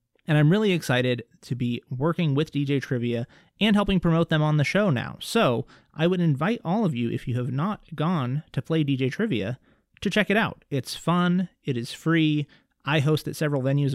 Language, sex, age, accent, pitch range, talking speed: English, male, 30-49, American, 125-160 Hz, 205 wpm